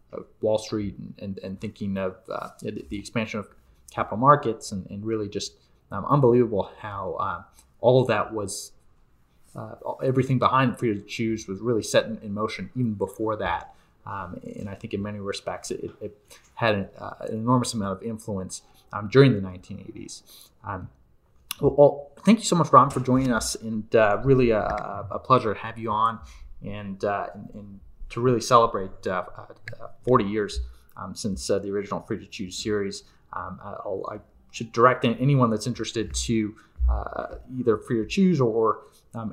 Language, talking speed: English, 180 wpm